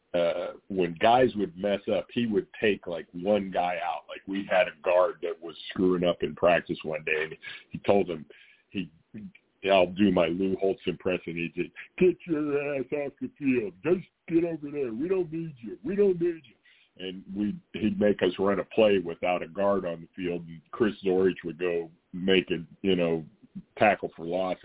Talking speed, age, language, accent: 205 wpm, 50-69, English, American